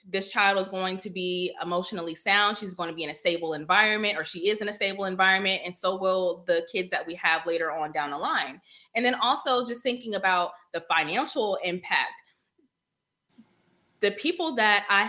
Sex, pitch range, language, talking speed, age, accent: female, 175-205 Hz, English, 195 wpm, 20-39, American